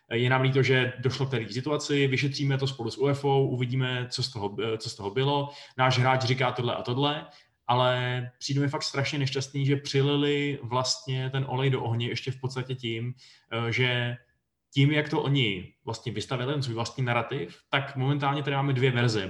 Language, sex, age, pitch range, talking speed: Czech, male, 20-39, 110-130 Hz, 185 wpm